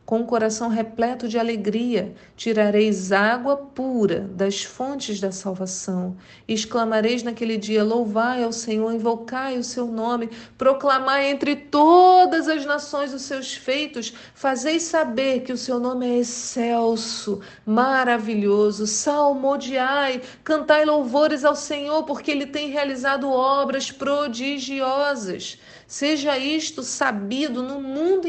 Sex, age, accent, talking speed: female, 50-69, Brazilian, 120 wpm